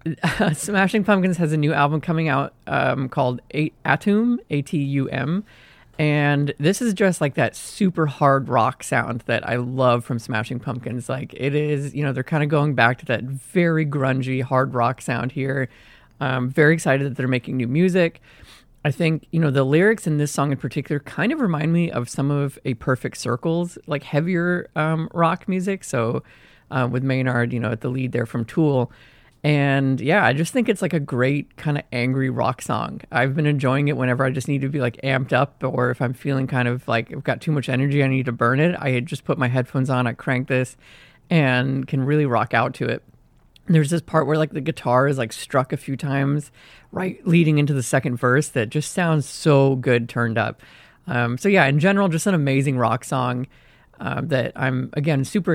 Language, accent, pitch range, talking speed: English, American, 125-155 Hz, 210 wpm